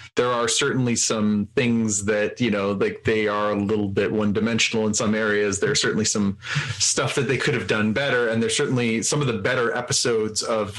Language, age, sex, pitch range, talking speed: English, 30-49, male, 105-130 Hz, 215 wpm